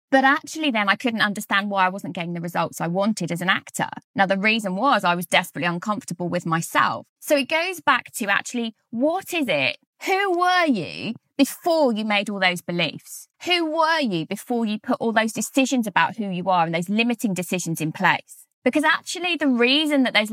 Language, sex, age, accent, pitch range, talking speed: English, female, 20-39, British, 195-275 Hz, 205 wpm